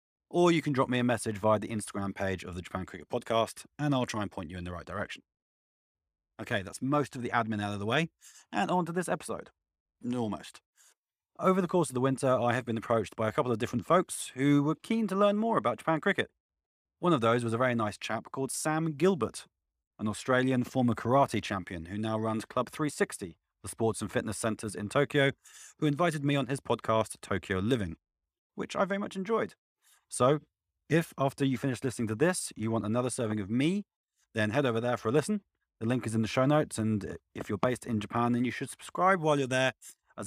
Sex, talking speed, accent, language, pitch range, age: male, 225 wpm, British, English, 105-140 Hz, 30-49